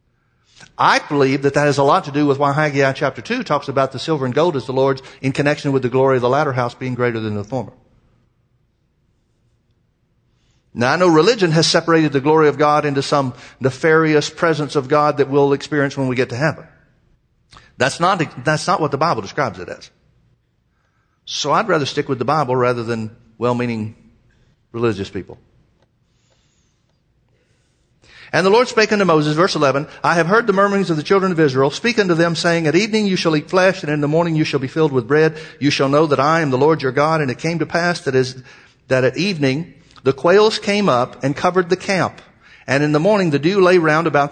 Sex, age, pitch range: male, 50-69, 135-175 Hz